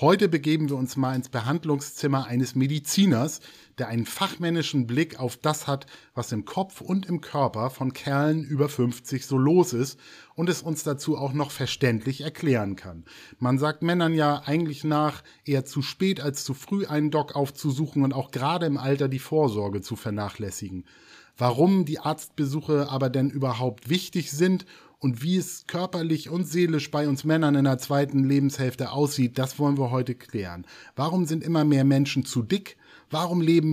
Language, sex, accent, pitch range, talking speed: German, male, German, 130-165 Hz, 175 wpm